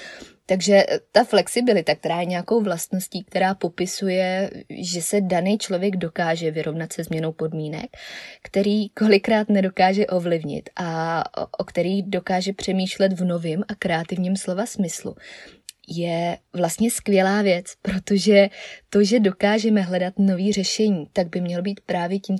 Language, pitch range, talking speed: Czech, 175-200 Hz, 135 wpm